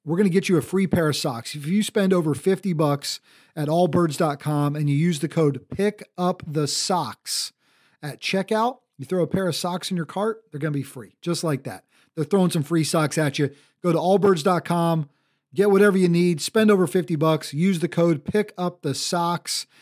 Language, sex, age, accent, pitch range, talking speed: English, male, 40-59, American, 150-195 Hz, 195 wpm